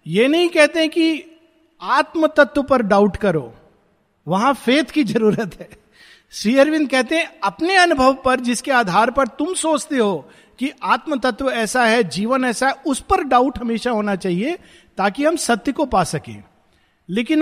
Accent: native